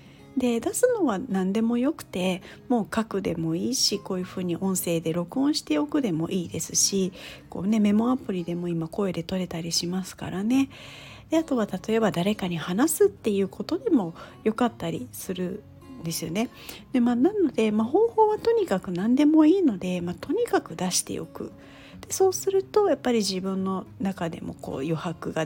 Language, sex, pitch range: Japanese, female, 180-265 Hz